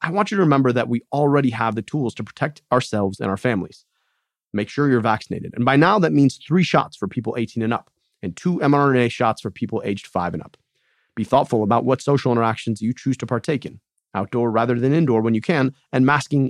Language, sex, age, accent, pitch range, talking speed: English, male, 30-49, American, 115-155 Hz, 230 wpm